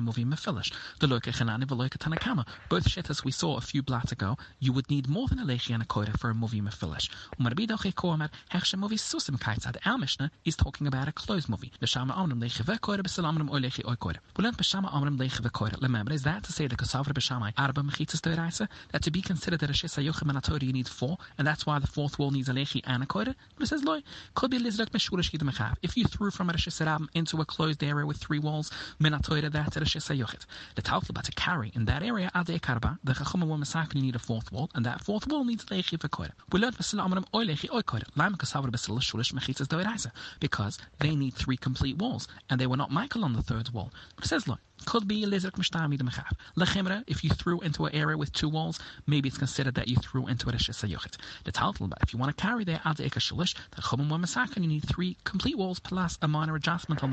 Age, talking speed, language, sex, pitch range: 30-49, 190 wpm, English, male, 130-175 Hz